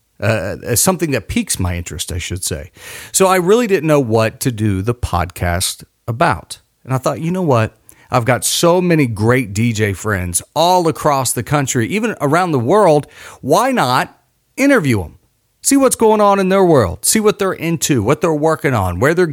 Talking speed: 195 wpm